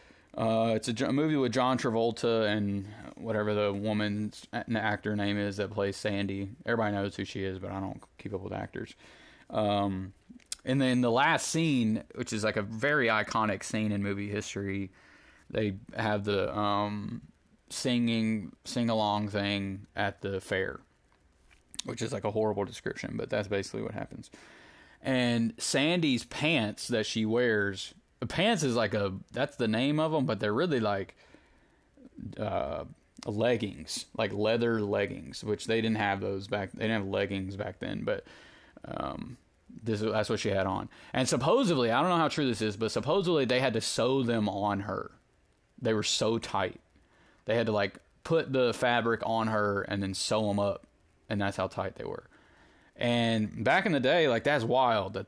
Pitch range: 100-115 Hz